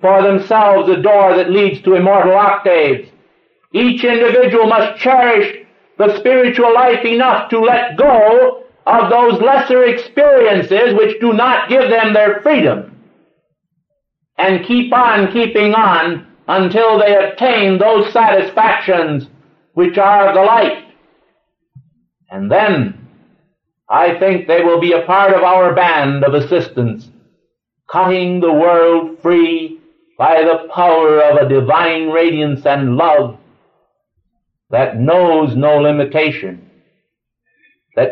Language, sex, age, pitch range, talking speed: English, male, 60-79, 160-220 Hz, 120 wpm